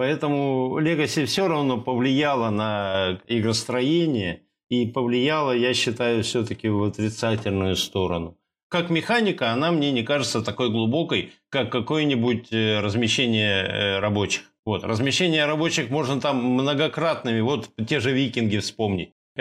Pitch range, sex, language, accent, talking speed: 110-150 Hz, male, Russian, native, 115 wpm